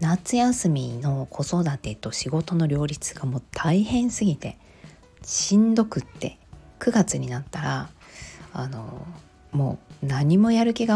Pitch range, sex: 135-220 Hz, female